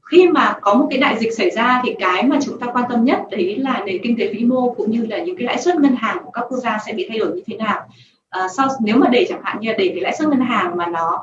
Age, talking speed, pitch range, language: 20-39, 325 wpm, 195-265 Hz, Vietnamese